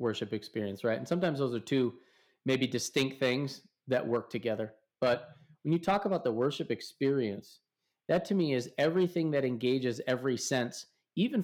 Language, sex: English, male